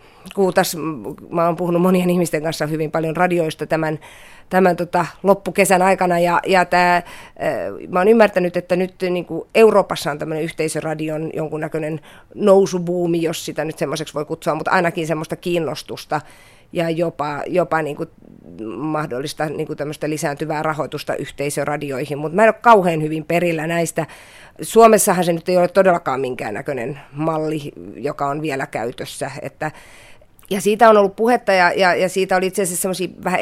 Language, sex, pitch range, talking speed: Finnish, female, 155-180 Hz, 150 wpm